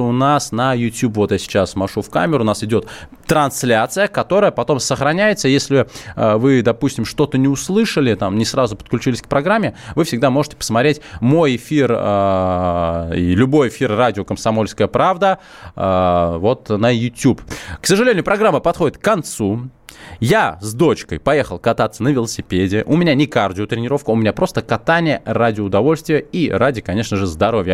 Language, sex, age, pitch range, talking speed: Russian, male, 20-39, 105-145 Hz, 165 wpm